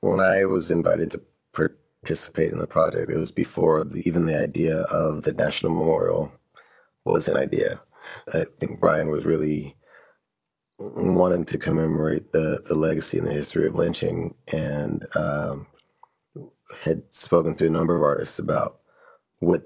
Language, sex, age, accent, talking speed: English, male, 30-49, American, 155 wpm